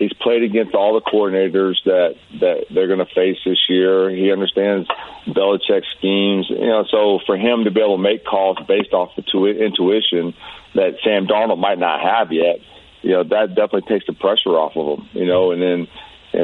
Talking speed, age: 205 wpm, 40-59